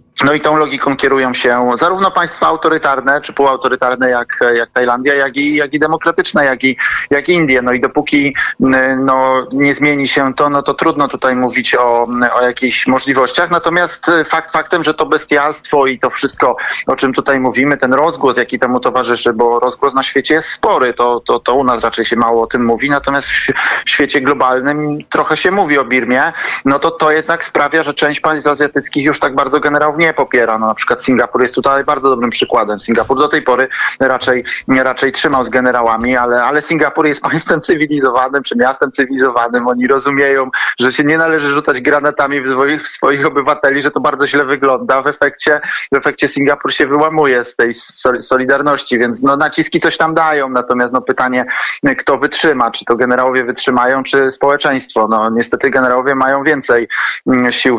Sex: male